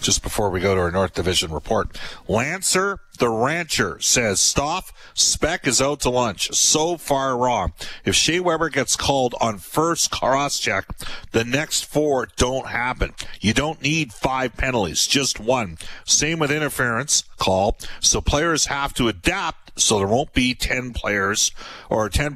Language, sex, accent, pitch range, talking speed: English, male, American, 105-135 Hz, 160 wpm